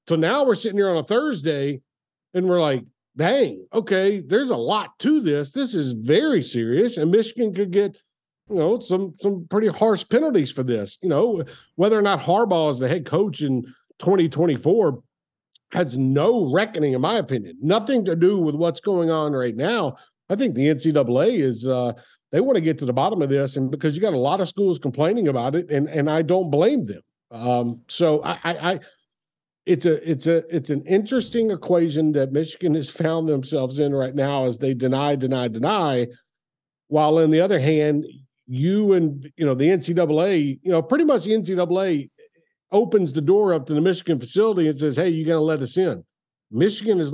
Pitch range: 145-185 Hz